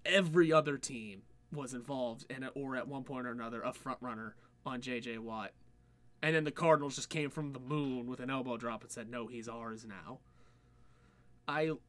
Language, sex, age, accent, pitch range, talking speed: English, male, 20-39, American, 120-145 Hz, 195 wpm